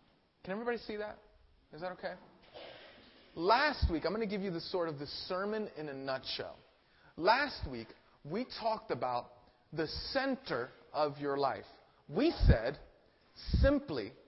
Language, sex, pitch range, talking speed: English, male, 160-215 Hz, 145 wpm